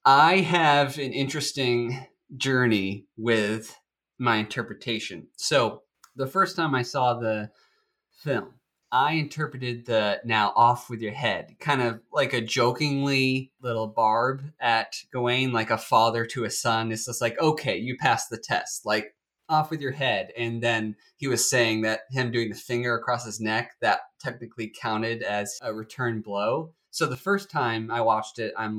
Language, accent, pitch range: English, American, 110-135 Hz